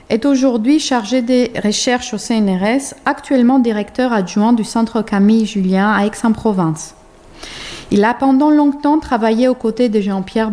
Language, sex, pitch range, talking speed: French, female, 210-255 Hz, 135 wpm